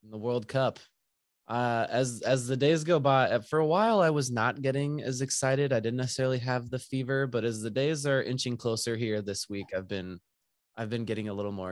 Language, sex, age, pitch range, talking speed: English, male, 20-39, 110-130 Hz, 225 wpm